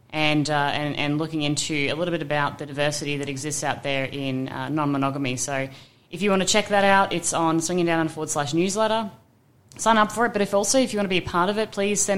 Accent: Australian